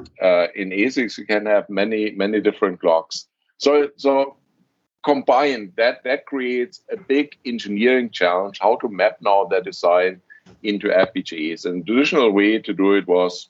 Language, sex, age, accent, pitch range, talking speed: English, male, 50-69, German, 100-135 Hz, 160 wpm